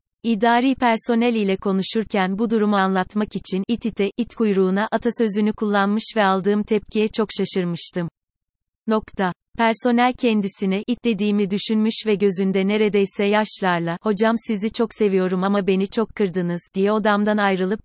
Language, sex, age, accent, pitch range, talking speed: Turkish, female, 30-49, native, 190-220 Hz, 130 wpm